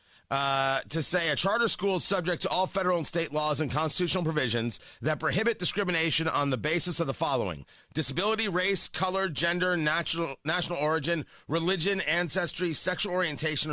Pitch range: 150-220 Hz